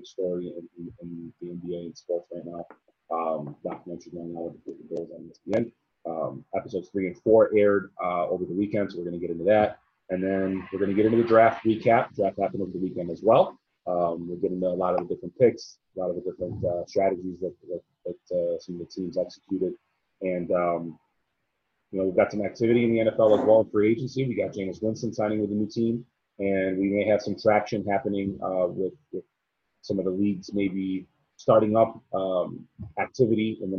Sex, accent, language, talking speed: male, American, English, 220 wpm